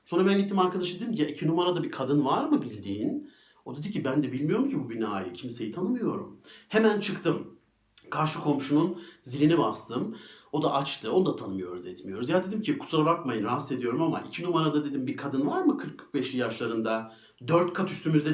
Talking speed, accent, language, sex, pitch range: 185 wpm, native, Turkish, male, 125-175 Hz